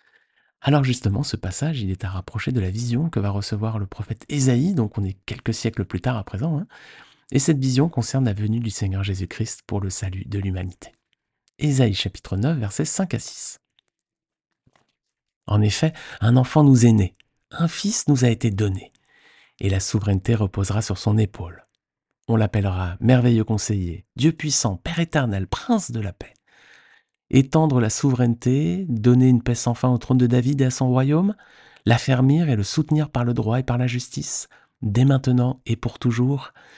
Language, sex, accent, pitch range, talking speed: French, male, French, 105-135 Hz, 185 wpm